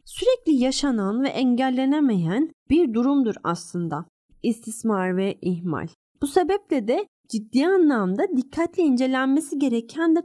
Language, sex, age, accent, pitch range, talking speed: Turkish, female, 30-49, native, 195-275 Hz, 110 wpm